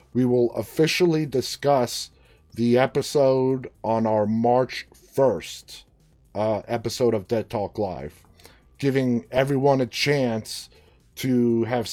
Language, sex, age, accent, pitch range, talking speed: English, male, 30-49, American, 100-125 Hz, 110 wpm